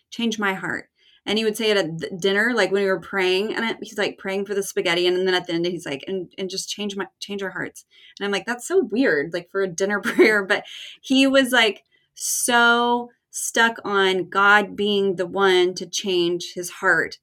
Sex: female